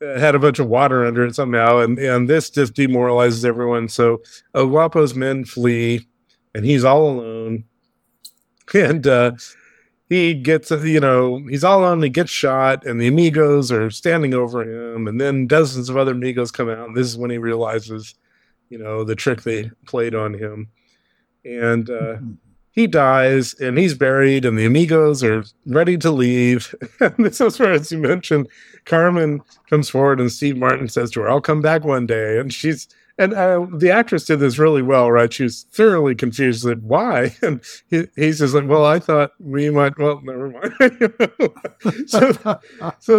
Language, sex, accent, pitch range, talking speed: English, male, American, 120-155 Hz, 180 wpm